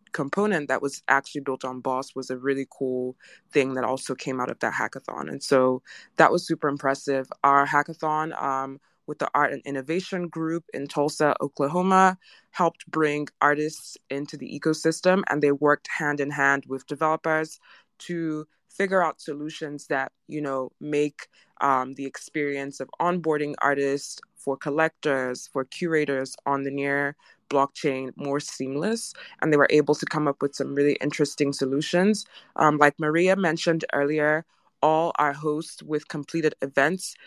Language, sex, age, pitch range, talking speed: English, female, 20-39, 140-155 Hz, 160 wpm